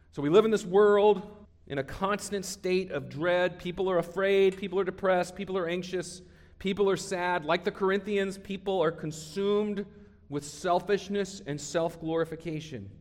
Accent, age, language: American, 40-59, English